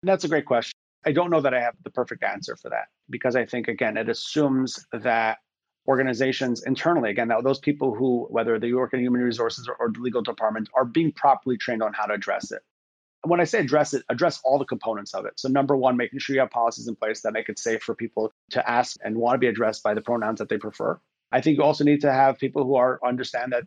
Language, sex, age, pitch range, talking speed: English, male, 30-49, 115-145 Hz, 260 wpm